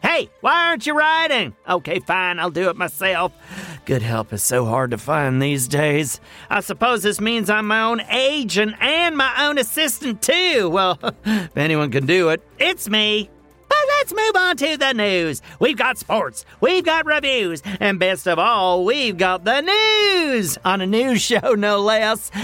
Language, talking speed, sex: English, 180 wpm, male